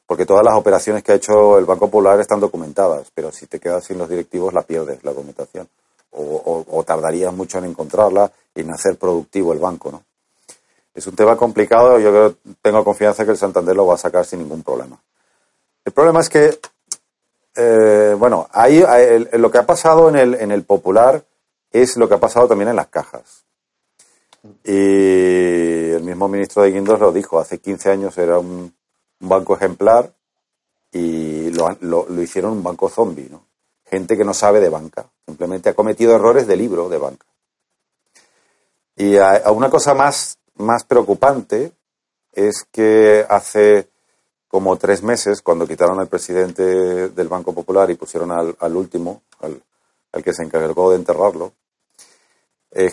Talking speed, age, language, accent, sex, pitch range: 175 wpm, 40-59, Spanish, Spanish, male, 90-110 Hz